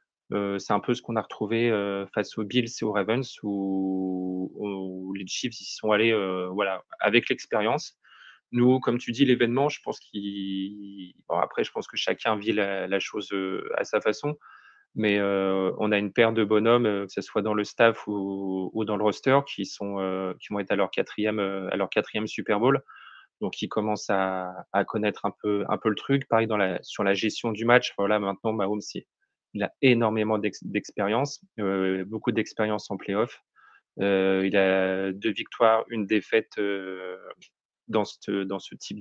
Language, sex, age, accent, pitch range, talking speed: French, male, 20-39, French, 95-115 Hz, 185 wpm